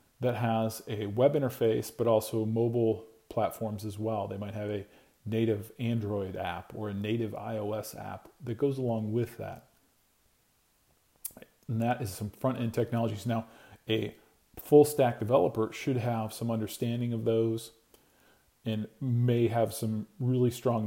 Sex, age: male, 40-59